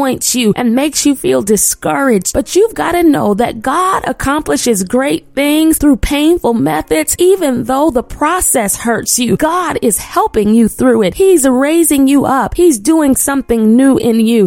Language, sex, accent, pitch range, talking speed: English, female, American, 225-310 Hz, 170 wpm